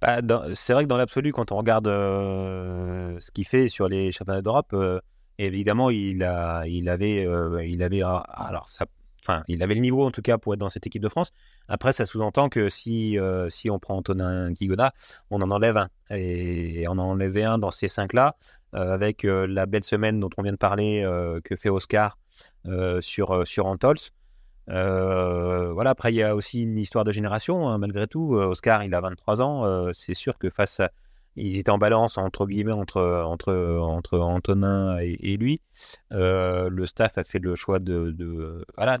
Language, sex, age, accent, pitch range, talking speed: French, male, 30-49, French, 90-110 Hz, 190 wpm